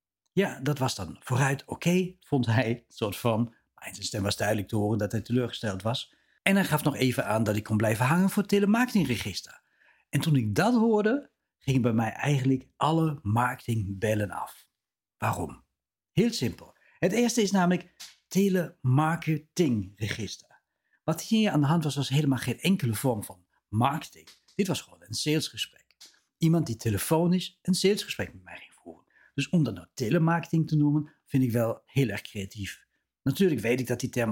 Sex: male